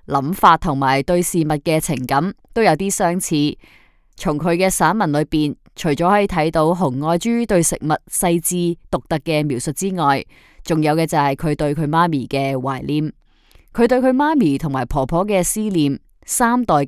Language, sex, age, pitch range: Chinese, female, 20-39, 145-195 Hz